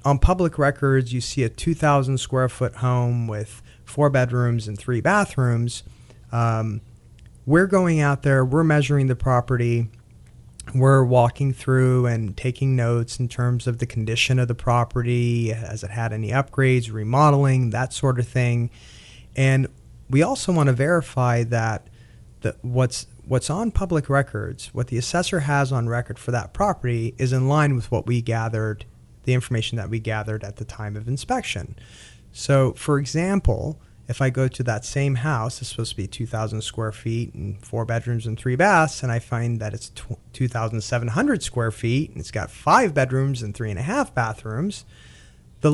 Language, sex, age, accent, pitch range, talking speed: English, male, 30-49, American, 115-140 Hz, 170 wpm